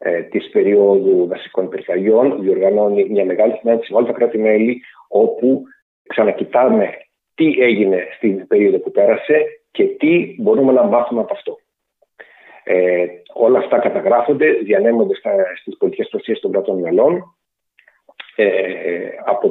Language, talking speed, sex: Greek, 120 wpm, male